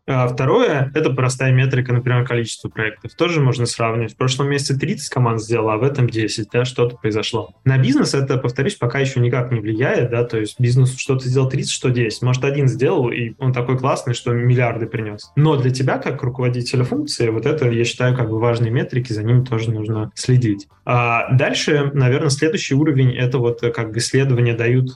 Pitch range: 120-135 Hz